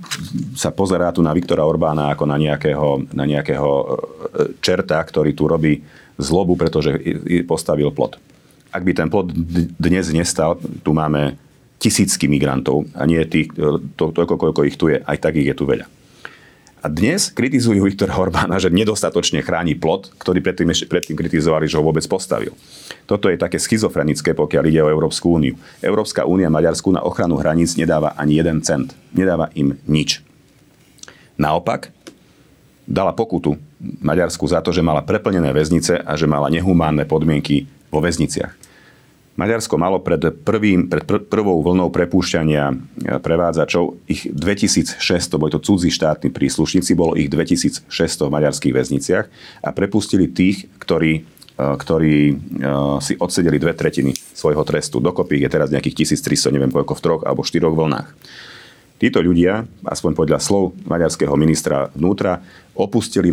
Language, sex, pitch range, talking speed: Slovak, male, 75-85 Hz, 145 wpm